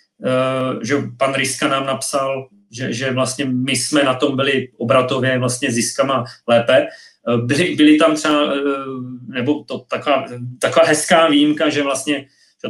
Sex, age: male, 30-49